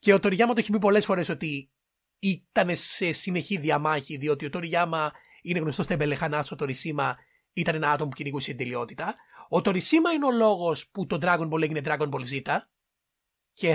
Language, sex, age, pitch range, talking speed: Greek, male, 30-49, 155-215 Hz, 190 wpm